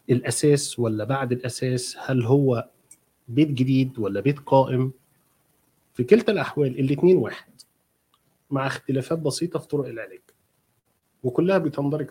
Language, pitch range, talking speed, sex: Arabic, 120-160 Hz, 120 wpm, male